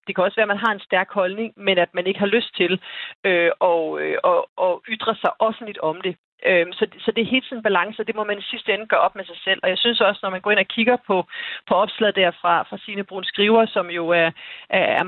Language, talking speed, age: Danish, 270 wpm, 40-59